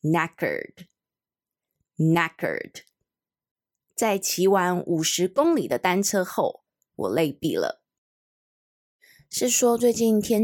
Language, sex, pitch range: Chinese, female, 170-240 Hz